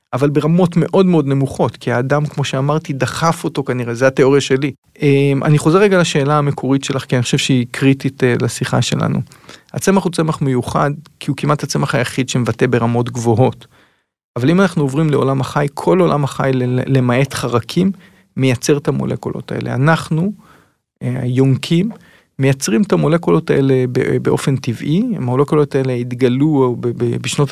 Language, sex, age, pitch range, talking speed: Hebrew, male, 40-59, 130-170 Hz, 145 wpm